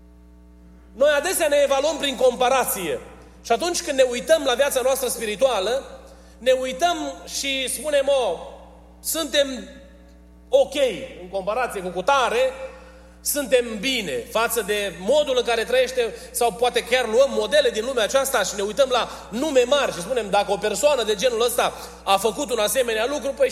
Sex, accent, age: male, native, 30-49